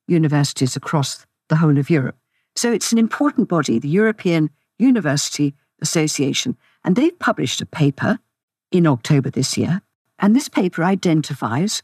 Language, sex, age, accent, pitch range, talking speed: English, female, 60-79, British, 145-205 Hz, 140 wpm